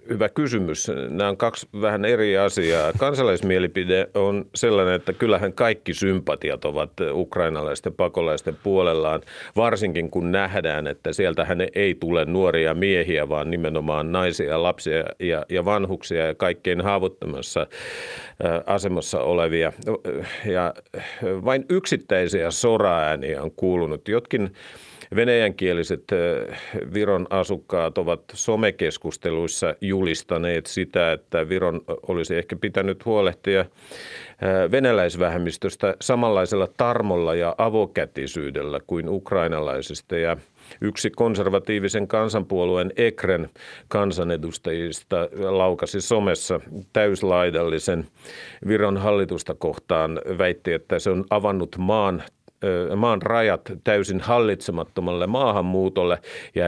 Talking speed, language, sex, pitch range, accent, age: 95 wpm, Finnish, male, 85-100 Hz, native, 50-69